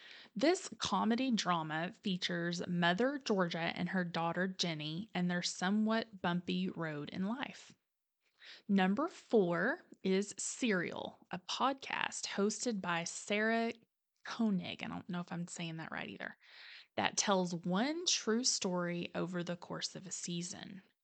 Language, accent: English, American